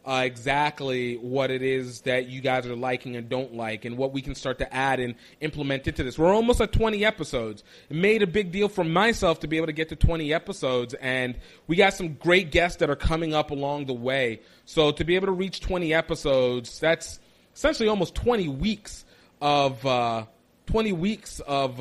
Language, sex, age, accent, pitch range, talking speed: English, male, 30-49, American, 130-185 Hz, 200 wpm